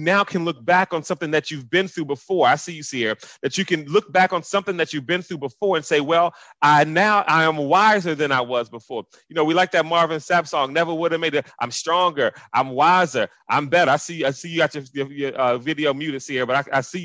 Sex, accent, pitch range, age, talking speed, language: male, American, 140-175 Hz, 30-49, 270 wpm, English